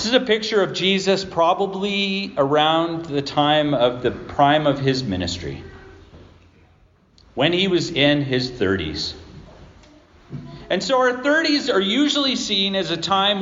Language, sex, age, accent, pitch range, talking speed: English, male, 40-59, American, 145-220 Hz, 145 wpm